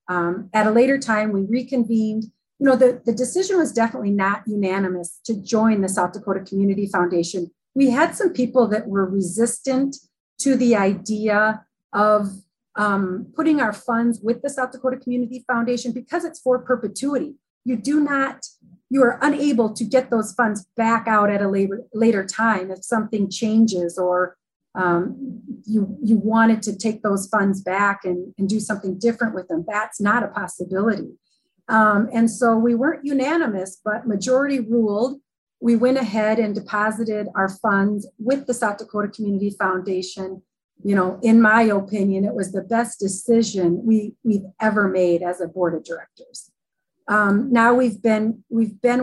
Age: 30-49